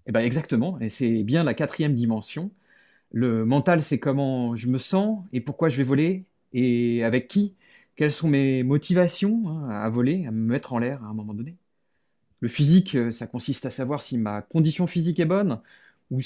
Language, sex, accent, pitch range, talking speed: French, male, French, 120-165 Hz, 190 wpm